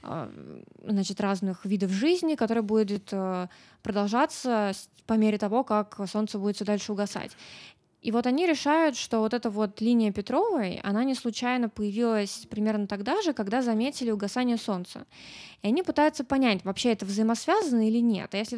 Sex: female